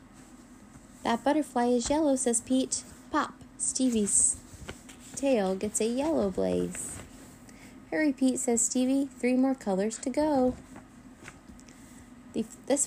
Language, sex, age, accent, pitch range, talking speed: English, female, 10-29, American, 210-260 Hz, 105 wpm